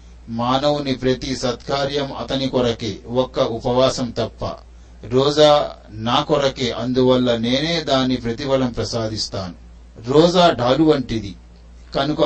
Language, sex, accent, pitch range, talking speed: Telugu, male, native, 115-140 Hz, 95 wpm